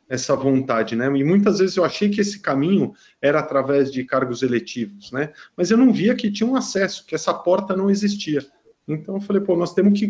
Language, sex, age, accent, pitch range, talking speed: Portuguese, male, 40-59, Brazilian, 130-175 Hz, 220 wpm